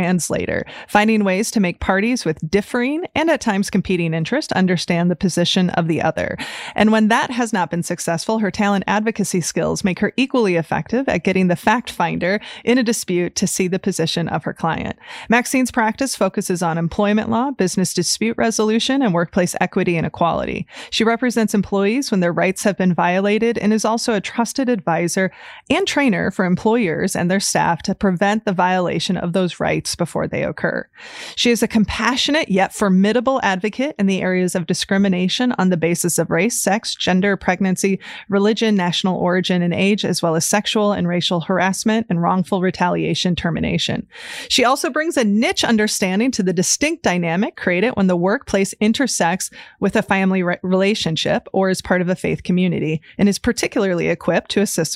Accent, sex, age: American, female, 30-49